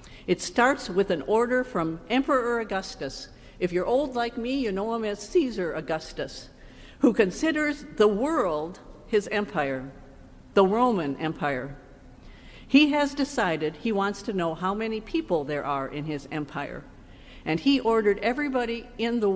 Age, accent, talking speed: 50-69, American, 150 wpm